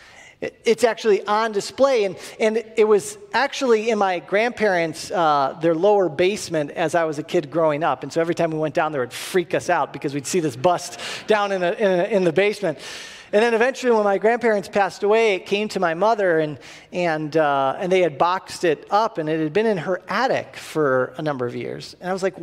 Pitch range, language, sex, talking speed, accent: 165-225 Hz, English, male, 235 wpm, American